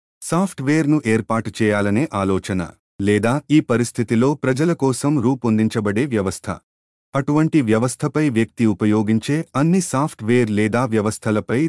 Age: 30-49